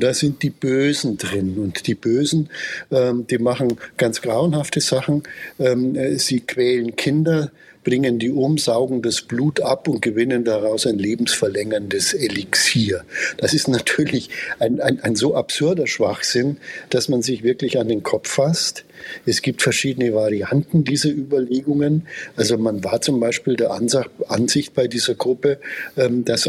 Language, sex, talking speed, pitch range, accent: German, male, 145 wpm, 115-145 Hz, German